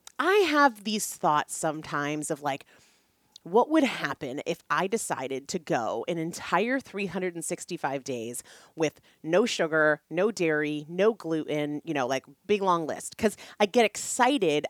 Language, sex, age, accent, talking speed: English, female, 30-49, American, 145 wpm